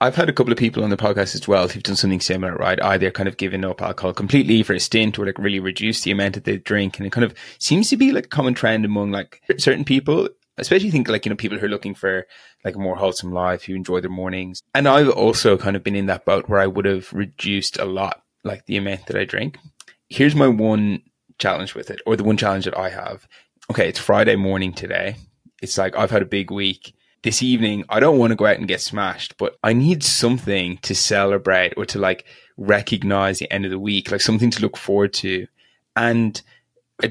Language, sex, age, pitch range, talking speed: English, male, 20-39, 95-115 Hz, 245 wpm